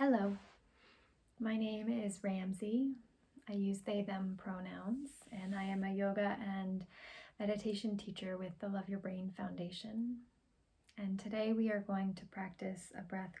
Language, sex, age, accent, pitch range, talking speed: English, female, 20-39, American, 190-225 Hz, 150 wpm